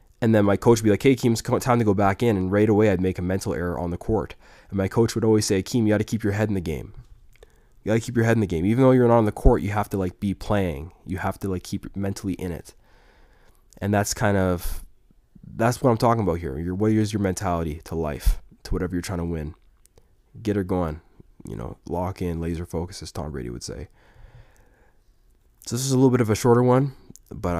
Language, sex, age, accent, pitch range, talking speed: English, male, 20-39, American, 85-105 Hz, 260 wpm